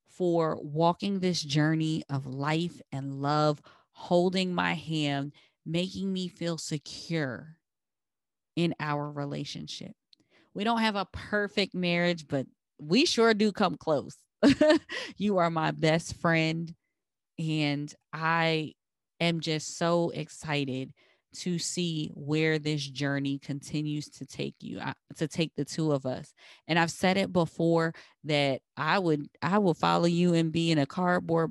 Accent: American